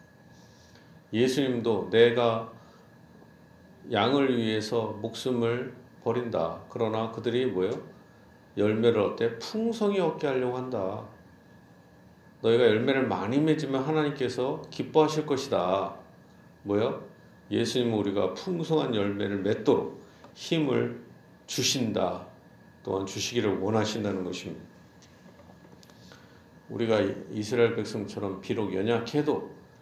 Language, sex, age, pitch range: Korean, male, 50-69, 100-130 Hz